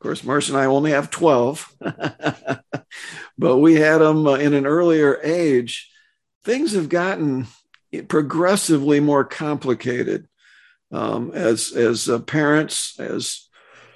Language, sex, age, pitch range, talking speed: English, male, 50-69, 125-165 Hz, 125 wpm